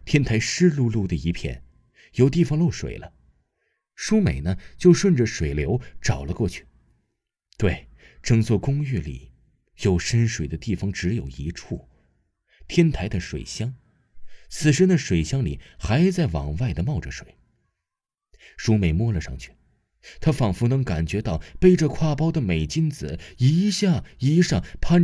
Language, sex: Chinese, male